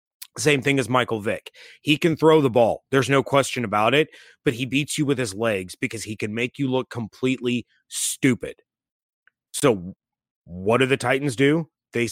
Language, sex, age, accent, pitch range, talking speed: English, male, 30-49, American, 115-140 Hz, 185 wpm